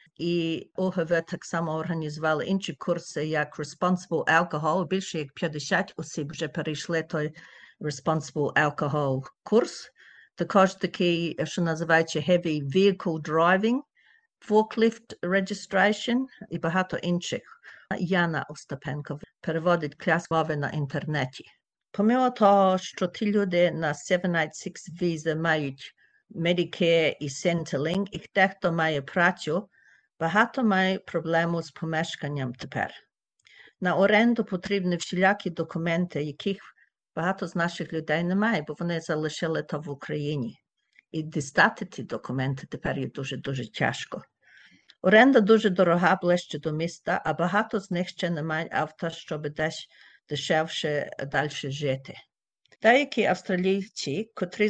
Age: 50-69